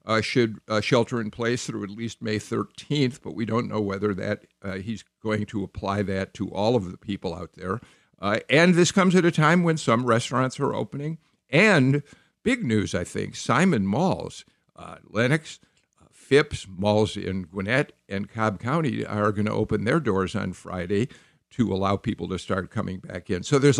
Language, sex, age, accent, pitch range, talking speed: English, male, 50-69, American, 105-135 Hz, 195 wpm